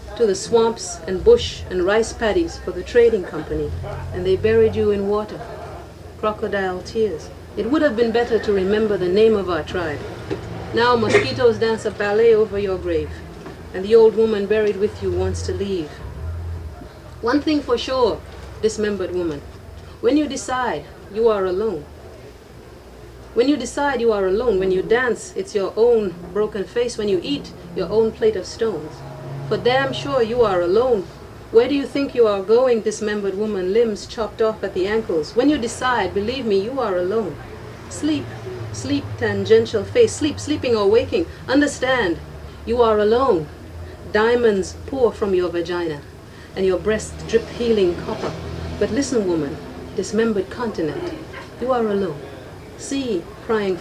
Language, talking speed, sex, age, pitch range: English, 165 wpm, female, 40-59, 190-255 Hz